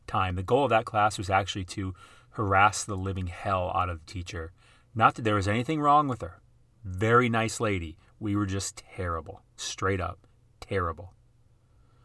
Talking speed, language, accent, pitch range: 175 wpm, English, American, 100-125 Hz